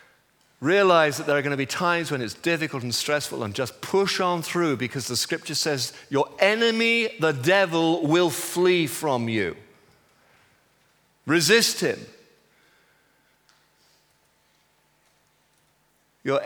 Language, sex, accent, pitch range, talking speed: English, male, British, 145-185 Hz, 120 wpm